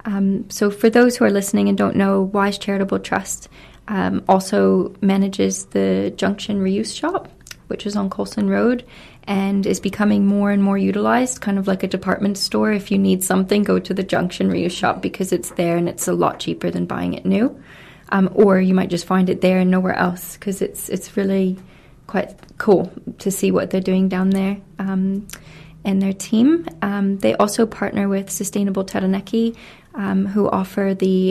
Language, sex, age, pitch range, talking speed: English, female, 20-39, 185-205 Hz, 190 wpm